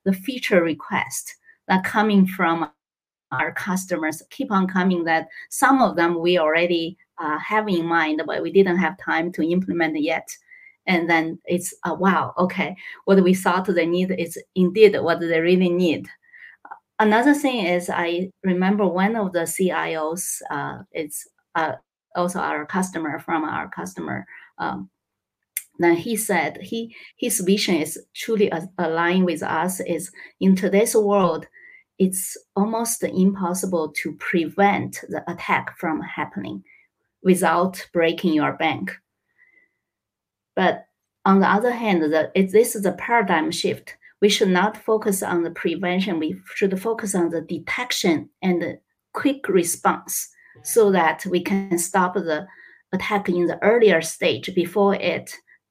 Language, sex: English, female